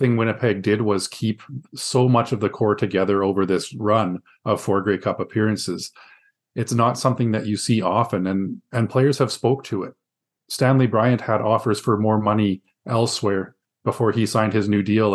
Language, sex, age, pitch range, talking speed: English, male, 30-49, 100-115 Hz, 185 wpm